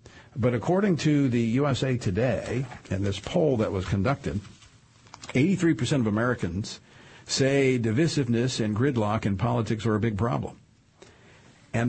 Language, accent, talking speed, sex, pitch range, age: English, American, 135 wpm, male, 105-130 Hz, 50-69